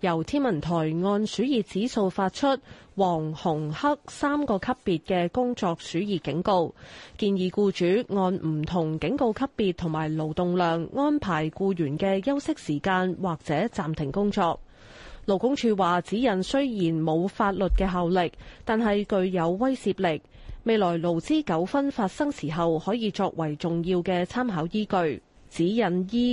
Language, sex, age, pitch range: Chinese, female, 30-49, 170-235 Hz